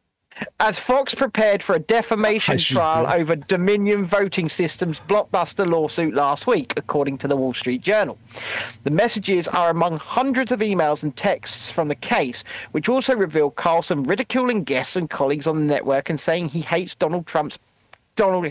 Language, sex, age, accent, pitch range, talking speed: English, male, 40-59, British, 150-200 Hz, 165 wpm